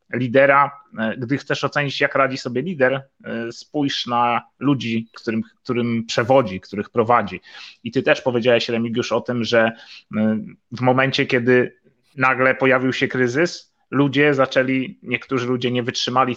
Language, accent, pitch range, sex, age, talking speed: Polish, native, 120-140 Hz, male, 30-49, 135 wpm